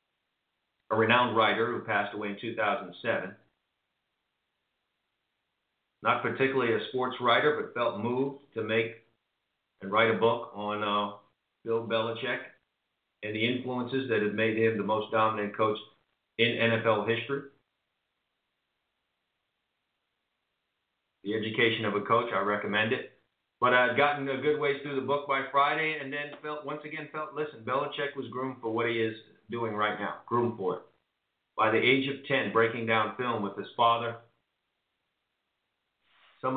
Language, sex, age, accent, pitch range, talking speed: English, male, 50-69, American, 115-135 Hz, 150 wpm